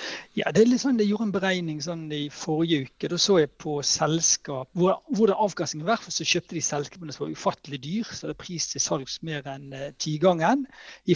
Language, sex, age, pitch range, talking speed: English, male, 60-79, 145-185 Hz, 240 wpm